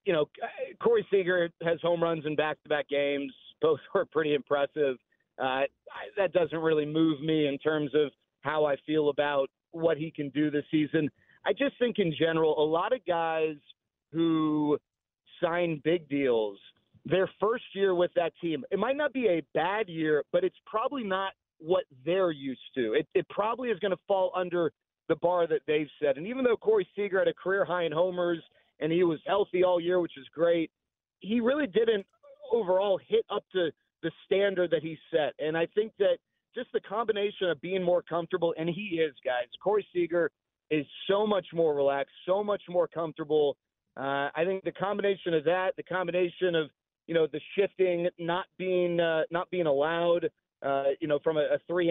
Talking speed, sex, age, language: 190 wpm, male, 40-59, English